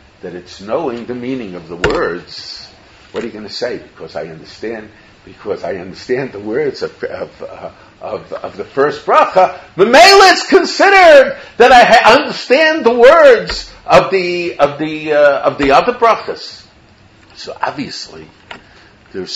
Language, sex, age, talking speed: English, male, 50-69, 160 wpm